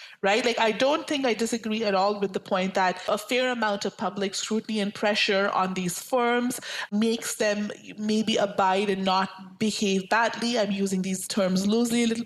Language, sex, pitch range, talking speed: English, female, 215-275 Hz, 190 wpm